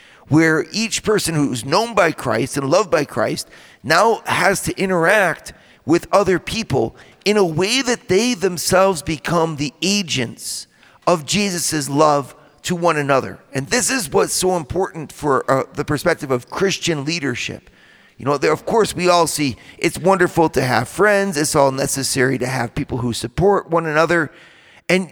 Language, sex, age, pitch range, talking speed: English, male, 40-59, 140-195 Hz, 165 wpm